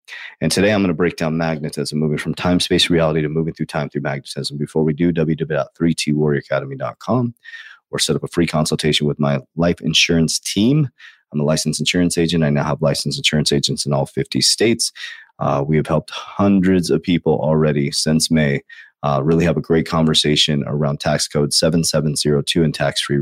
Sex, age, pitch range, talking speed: male, 30-49, 75-90 Hz, 185 wpm